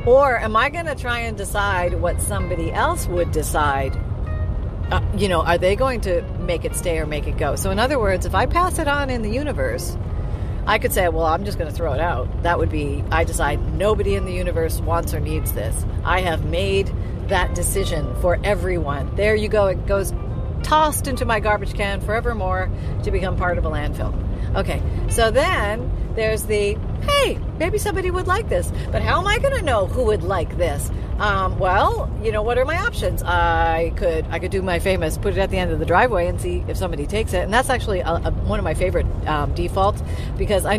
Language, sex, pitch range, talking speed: English, female, 85-100 Hz, 220 wpm